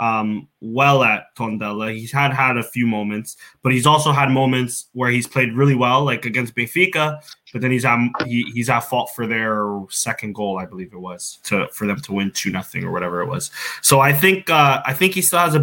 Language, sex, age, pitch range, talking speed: English, male, 20-39, 120-150 Hz, 230 wpm